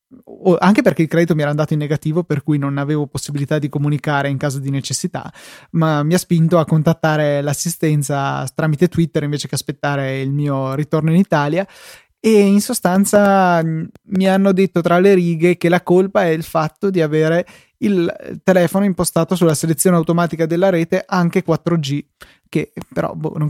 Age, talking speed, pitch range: 20-39, 175 wpm, 150-175 Hz